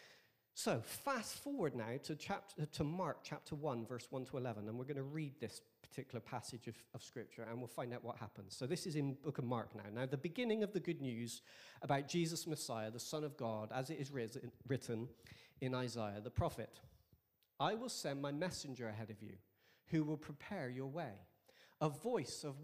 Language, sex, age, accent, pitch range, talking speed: English, male, 40-59, British, 115-150 Hz, 205 wpm